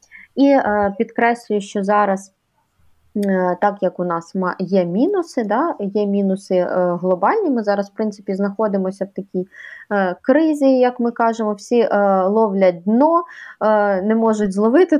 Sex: female